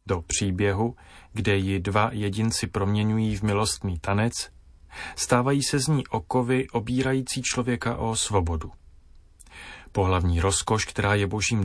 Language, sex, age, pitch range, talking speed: Slovak, male, 30-49, 90-120 Hz, 125 wpm